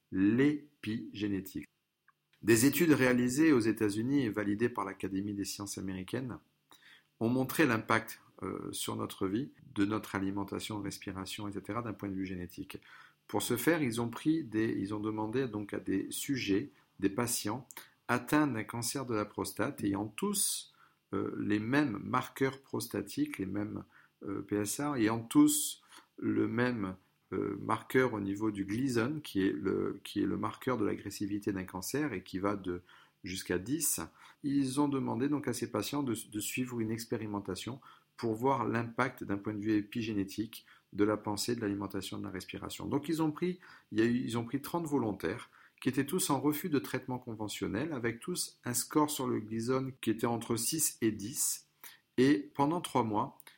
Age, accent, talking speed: 50-69, French, 175 wpm